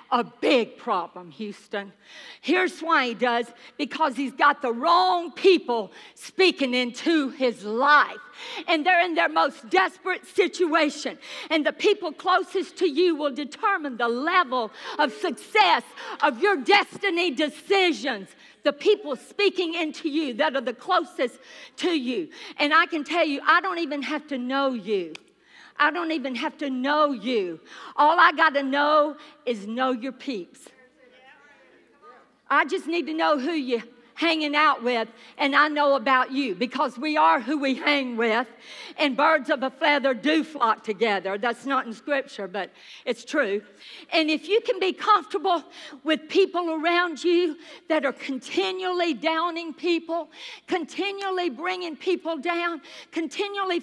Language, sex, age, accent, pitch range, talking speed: English, female, 50-69, American, 270-355 Hz, 155 wpm